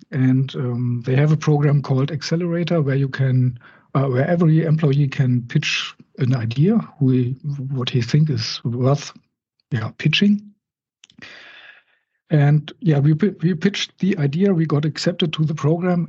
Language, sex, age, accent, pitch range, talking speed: English, male, 50-69, German, 130-155 Hz, 155 wpm